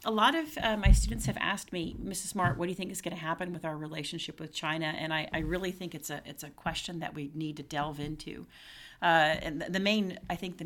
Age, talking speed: 40-59, 265 wpm